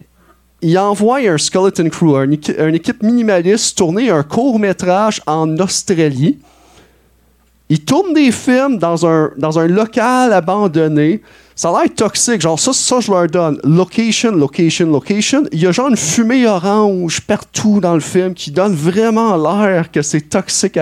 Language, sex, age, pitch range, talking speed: French, male, 30-49, 155-215 Hz, 160 wpm